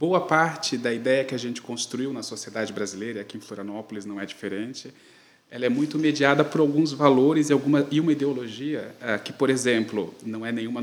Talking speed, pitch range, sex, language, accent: 195 wpm, 115-145 Hz, male, Portuguese, Brazilian